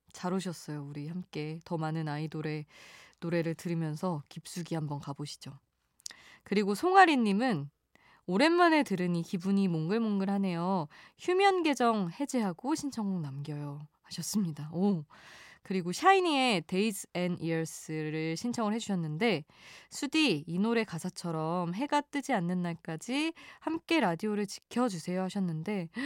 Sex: female